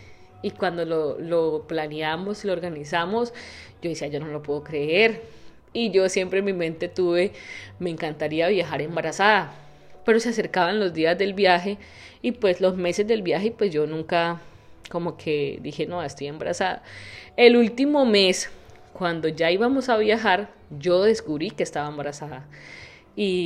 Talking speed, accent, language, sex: 155 wpm, Colombian, Spanish, female